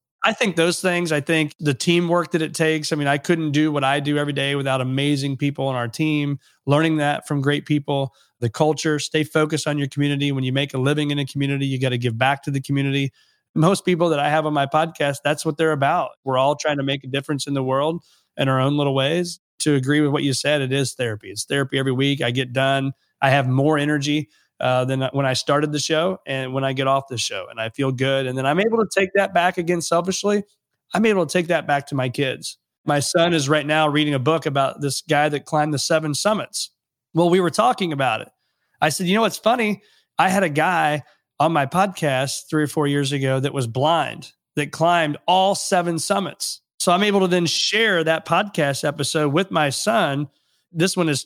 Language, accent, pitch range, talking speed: English, American, 140-170 Hz, 235 wpm